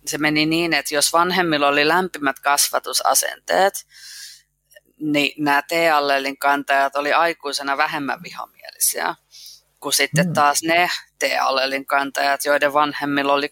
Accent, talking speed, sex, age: native, 115 wpm, female, 20-39